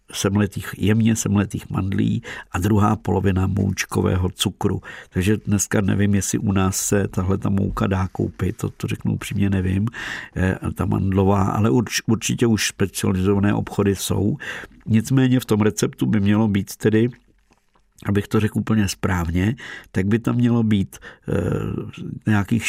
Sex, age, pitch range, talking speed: male, 50-69, 95-110 Hz, 140 wpm